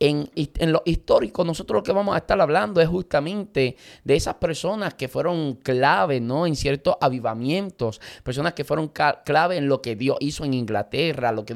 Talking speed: 180 wpm